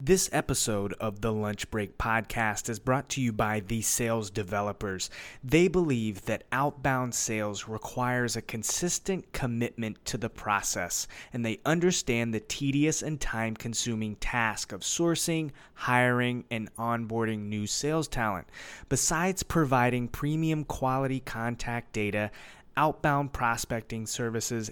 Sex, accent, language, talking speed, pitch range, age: male, American, English, 125 wpm, 115-145 Hz, 20-39